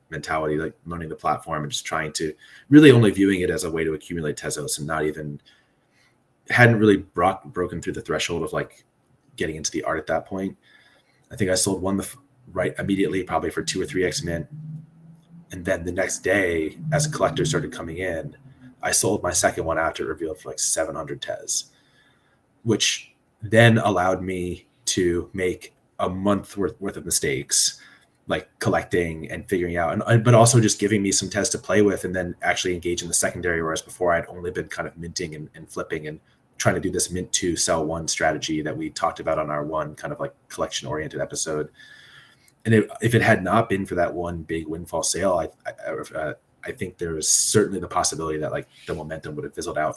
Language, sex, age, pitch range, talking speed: English, male, 30-49, 80-110 Hz, 215 wpm